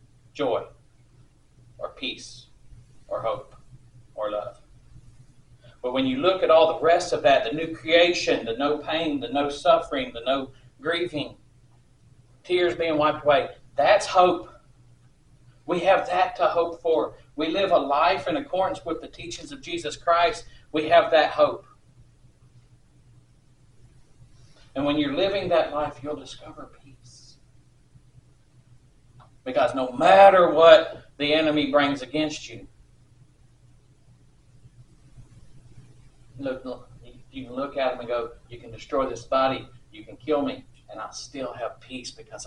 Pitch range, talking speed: 125-150 Hz, 140 wpm